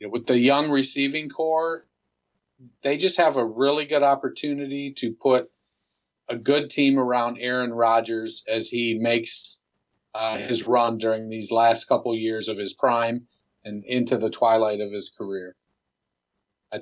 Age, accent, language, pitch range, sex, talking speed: 50-69, American, English, 115-135 Hz, male, 150 wpm